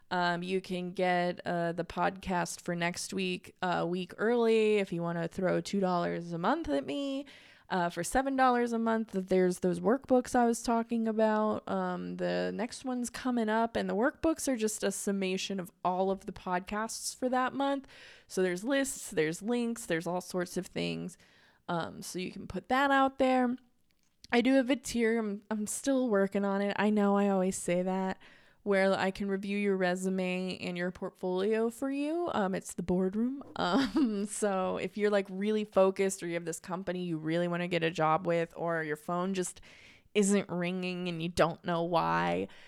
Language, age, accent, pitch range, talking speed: English, 20-39, American, 180-230 Hz, 195 wpm